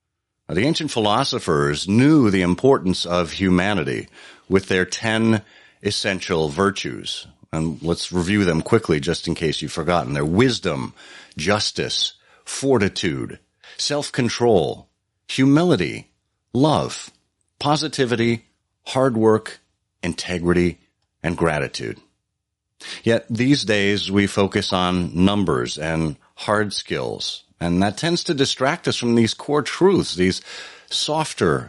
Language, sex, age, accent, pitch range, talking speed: English, male, 50-69, American, 90-115 Hz, 110 wpm